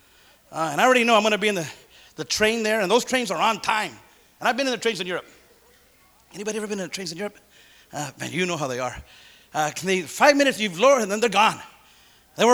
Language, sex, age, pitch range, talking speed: English, male, 30-49, 200-265 Hz, 270 wpm